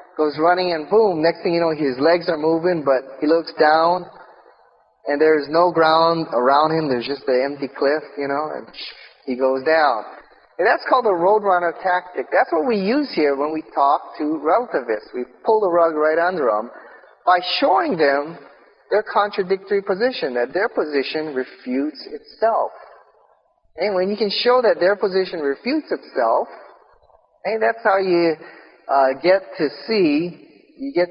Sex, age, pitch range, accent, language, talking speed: male, 30-49, 150-205 Hz, American, English, 170 wpm